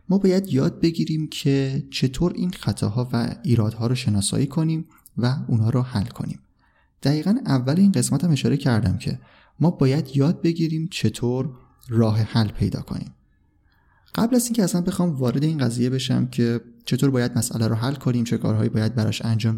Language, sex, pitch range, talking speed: Persian, male, 110-145 Hz, 170 wpm